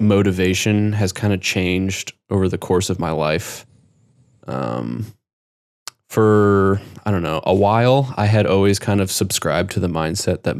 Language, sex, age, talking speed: English, male, 20-39, 160 wpm